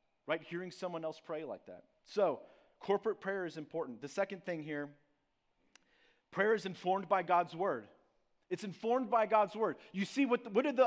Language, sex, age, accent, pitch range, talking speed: English, male, 30-49, American, 185-235 Hz, 180 wpm